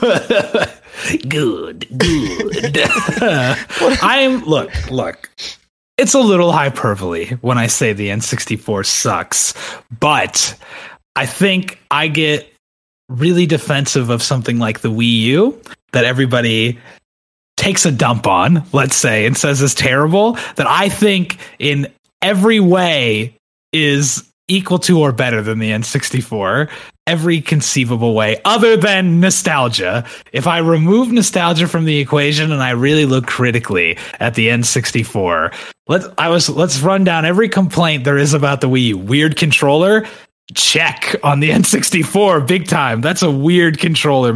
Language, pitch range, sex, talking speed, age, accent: English, 130-185 Hz, male, 135 wpm, 30-49, American